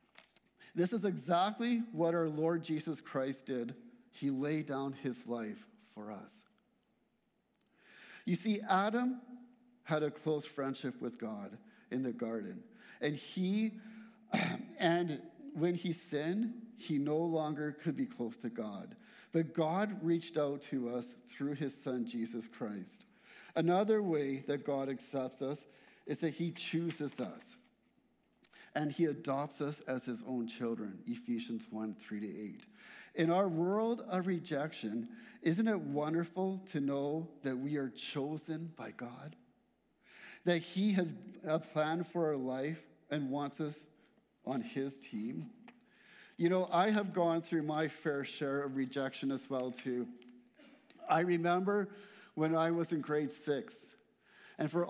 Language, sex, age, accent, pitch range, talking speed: English, male, 50-69, American, 140-200 Hz, 145 wpm